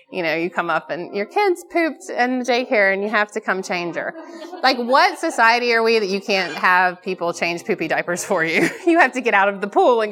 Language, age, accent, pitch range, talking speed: English, 30-49, American, 180-245 Hz, 255 wpm